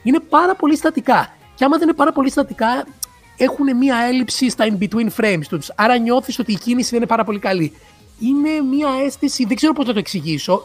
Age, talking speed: 30-49, 215 wpm